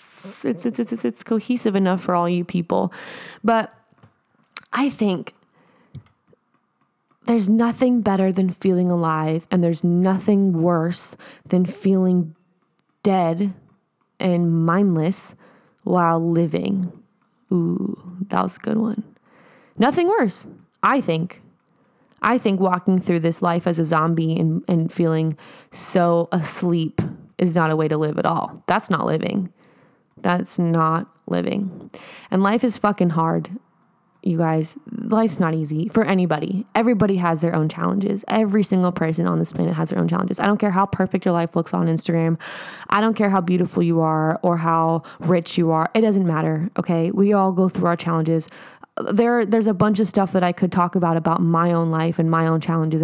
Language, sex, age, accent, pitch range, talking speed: English, female, 20-39, American, 165-200 Hz, 165 wpm